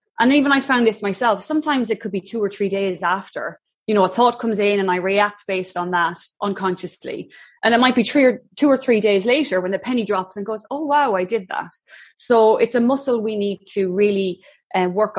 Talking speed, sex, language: 230 wpm, female, English